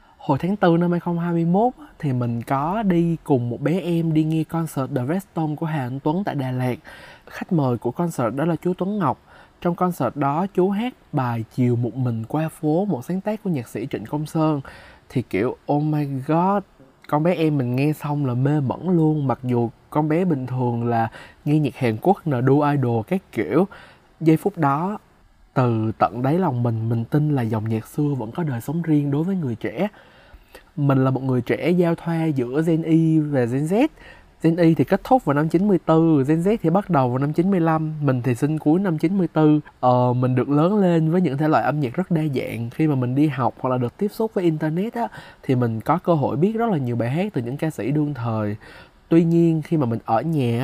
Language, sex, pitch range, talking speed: Vietnamese, male, 130-170 Hz, 230 wpm